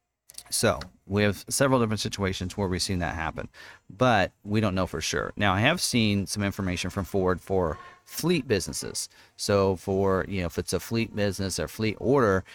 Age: 40-59